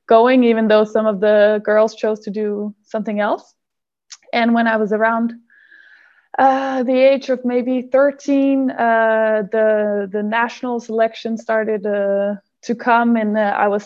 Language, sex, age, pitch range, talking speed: English, female, 20-39, 210-240 Hz, 155 wpm